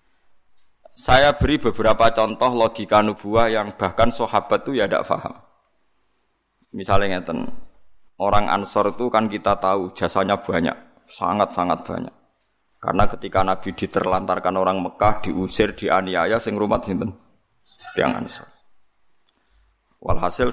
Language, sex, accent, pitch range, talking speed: Indonesian, male, native, 95-120 Hz, 110 wpm